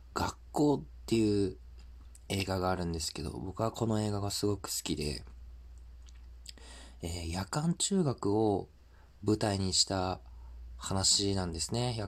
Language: Japanese